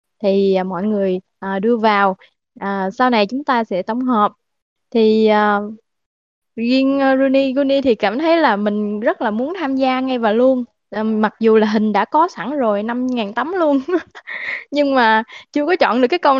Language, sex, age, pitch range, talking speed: Vietnamese, female, 20-39, 205-255 Hz, 185 wpm